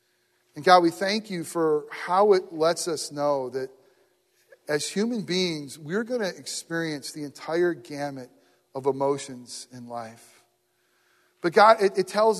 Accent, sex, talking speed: American, male, 150 wpm